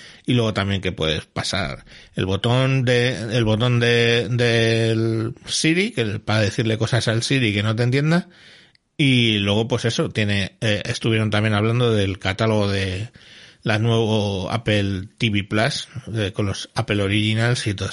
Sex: male